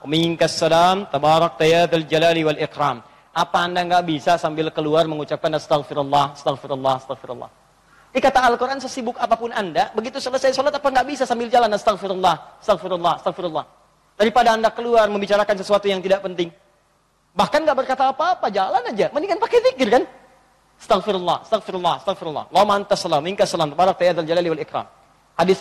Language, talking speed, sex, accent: Indonesian, 150 wpm, male, native